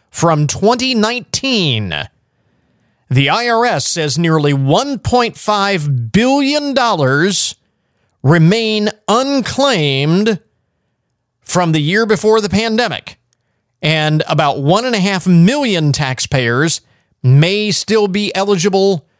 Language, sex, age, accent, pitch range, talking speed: English, male, 40-59, American, 140-205 Hz, 80 wpm